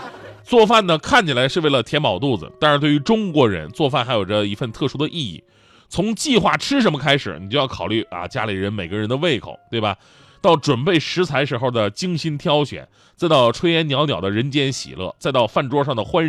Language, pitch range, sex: Chinese, 115-180 Hz, male